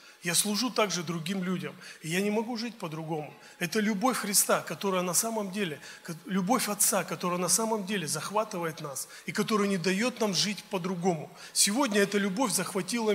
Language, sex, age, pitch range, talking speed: Russian, male, 30-49, 175-210 Hz, 170 wpm